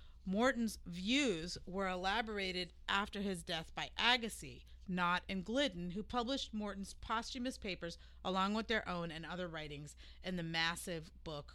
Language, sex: English, female